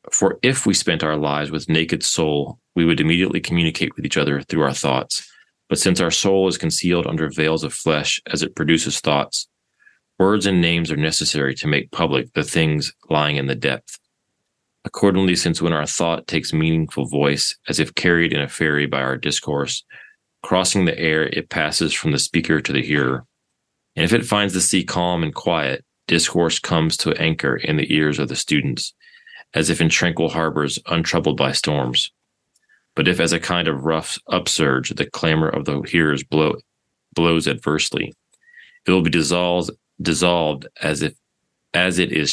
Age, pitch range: 30-49, 75-85 Hz